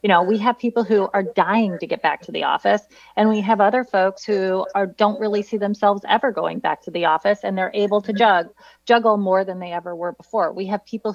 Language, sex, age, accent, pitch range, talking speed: English, female, 30-49, American, 185-215 Hz, 235 wpm